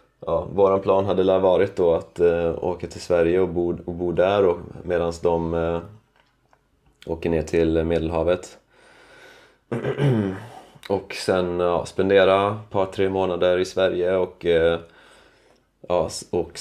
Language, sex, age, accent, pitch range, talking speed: Swedish, male, 30-49, native, 85-95 Hz, 130 wpm